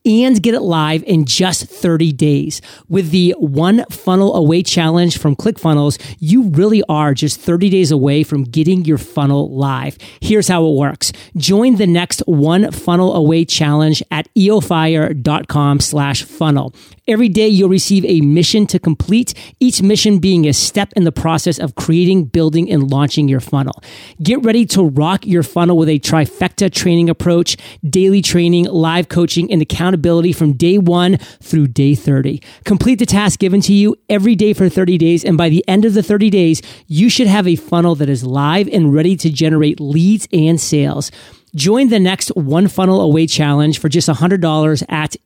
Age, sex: 40-59, male